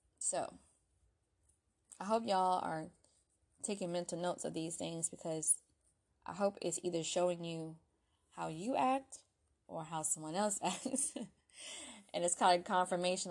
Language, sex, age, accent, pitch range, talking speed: English, female, 20-39, American, 155-190 Hz, 140 wpm